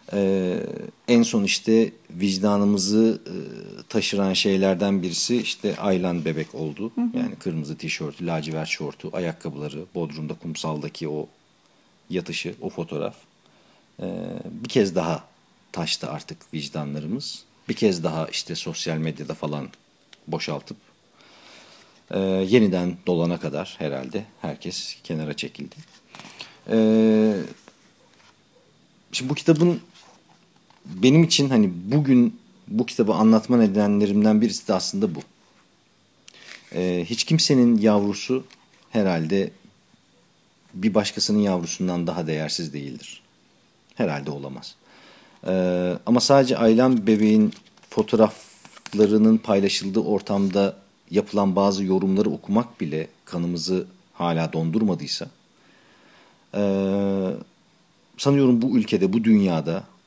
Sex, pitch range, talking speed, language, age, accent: male, 90-130 Hz, 95 wpm, Turkish, 50-69, native